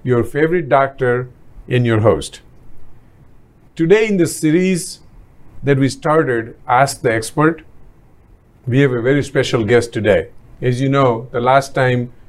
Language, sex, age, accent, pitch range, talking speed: English, male, 50-69, Indian, 120-150 Hz, 140 wpm